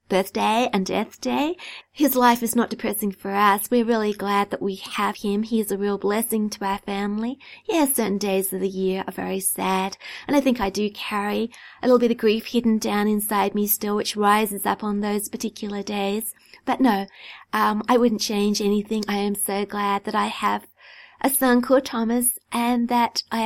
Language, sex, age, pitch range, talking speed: English, female, 30-49, 200-240 Hz, 205 wpm